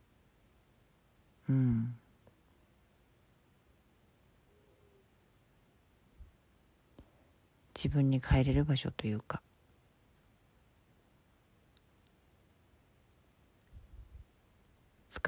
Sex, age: female, 40-59